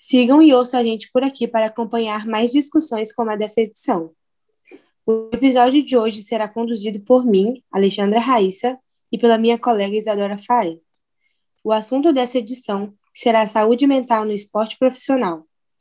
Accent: Brazilian